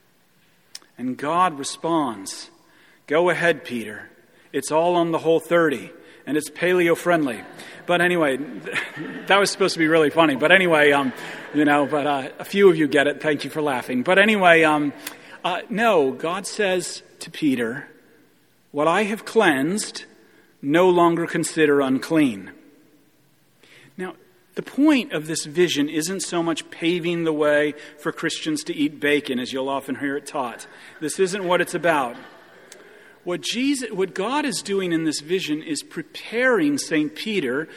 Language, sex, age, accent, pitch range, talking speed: English, male, 40-59, American, 150-200 Hz, 155 wpm